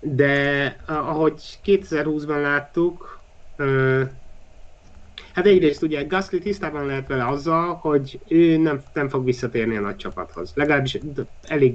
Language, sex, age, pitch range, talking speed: Hungarian, male, 30-49, 120-150 Hz, 115 wpm